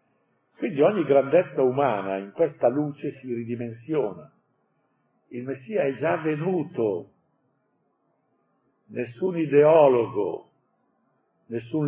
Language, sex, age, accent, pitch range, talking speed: Italian, male, 50-69, native, 115-155 Hz, 85 wpm